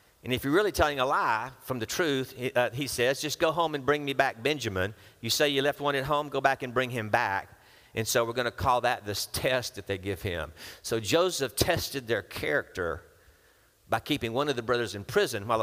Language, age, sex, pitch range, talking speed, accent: English, 50-69, male, 100-135 Hz, 230 wpm, American